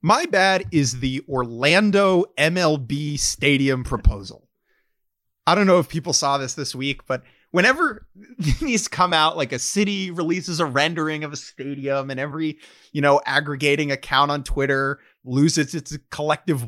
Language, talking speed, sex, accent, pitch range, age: English, 150 wpm, male, American, 135-185 Hz, 30-49